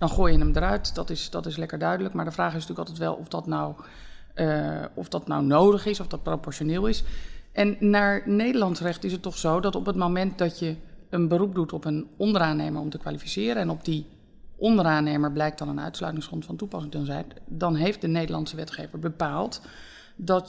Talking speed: 200 wpm